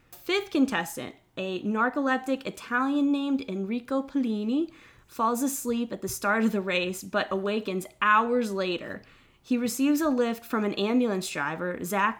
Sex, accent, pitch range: female, American, 180-235 Hz